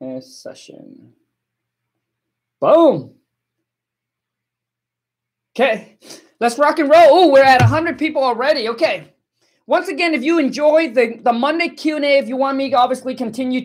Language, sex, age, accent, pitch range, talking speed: English, male, 30-49, American, 230-295 Hz, 135 wpm